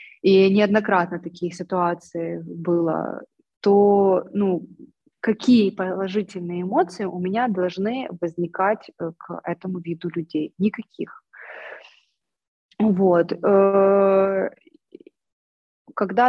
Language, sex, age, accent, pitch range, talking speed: Russian, female, 20-39, native, 180-215 Hz, 75 wpm